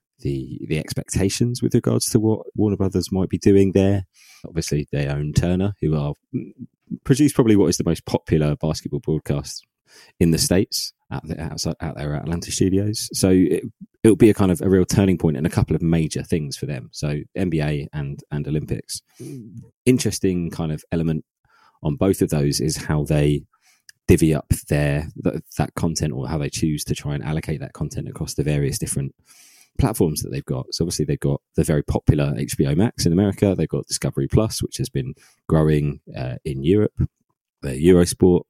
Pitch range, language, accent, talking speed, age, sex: 75-95 Hz, English, British, 190 wpm, 20-39, male